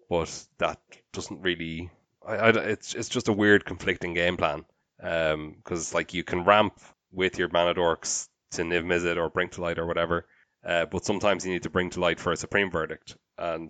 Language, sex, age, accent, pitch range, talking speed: English, male, 20-39, Irish, 85-90 Hz, 200 wpm